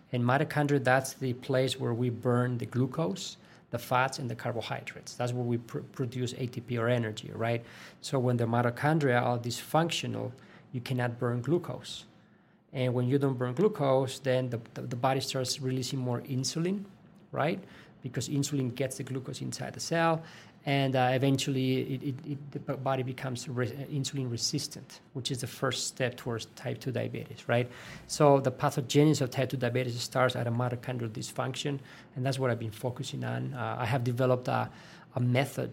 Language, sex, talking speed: English, male, 175 wpm